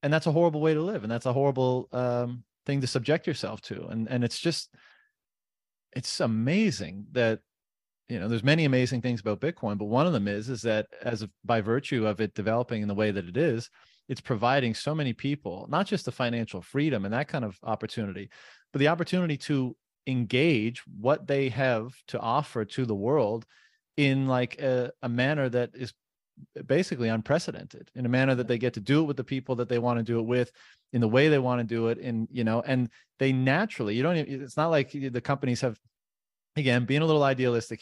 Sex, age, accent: male, 30-49, American